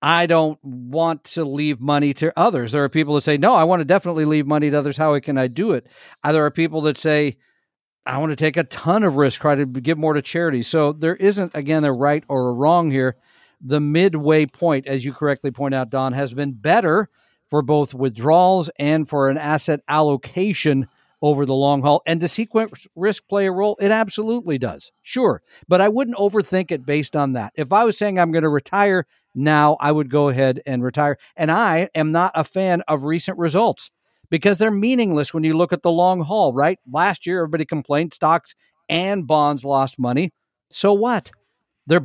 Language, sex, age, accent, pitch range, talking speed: English, male, 50-69, American, 145-180 Hz, 210 wpm